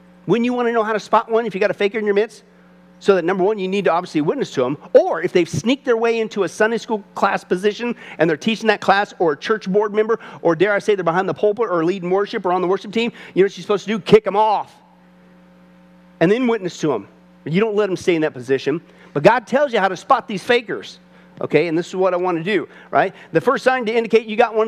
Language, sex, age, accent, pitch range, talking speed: English, male, 40-59, American, 175-230 Hz, 280 wpm